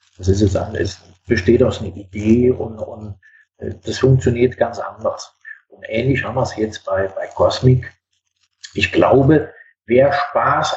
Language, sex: German, male